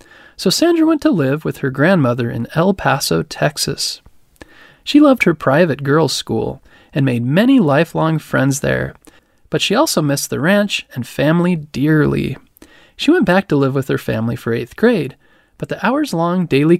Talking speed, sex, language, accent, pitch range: 170 wpm, male, English, American, 135-205 Hz